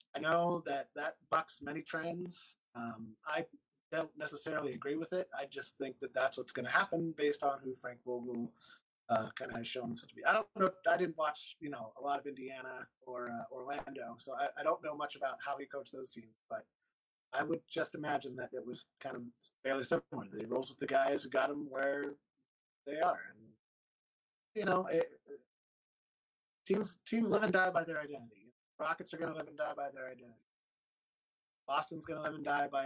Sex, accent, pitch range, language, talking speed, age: male, American, 135-170 Hz, English, 210 wpm, 30-49